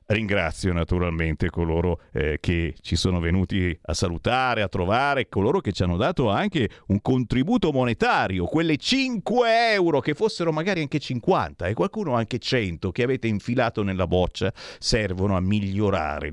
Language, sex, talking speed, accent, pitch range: Italian, male, 150 wpm, native, 95-150 Hz